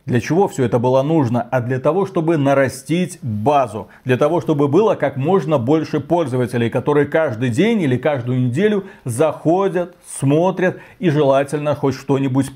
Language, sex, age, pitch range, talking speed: Russian, male, 40-59, 135-180 Hz, 155 wpm